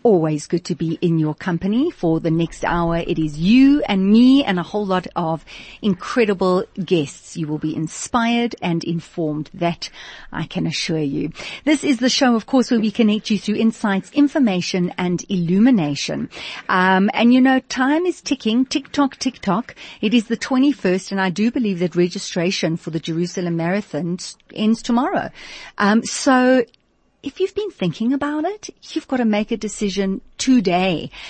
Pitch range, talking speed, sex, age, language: 170-230 Hz, 175 wpm, female, 40-59, English